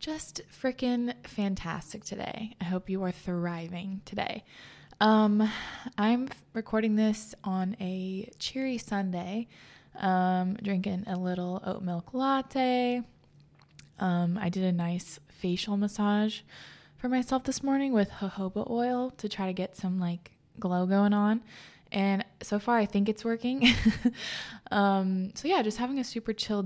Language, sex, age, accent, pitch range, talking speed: English, female, 20-39, American, 180-225 Hz, 140 wpm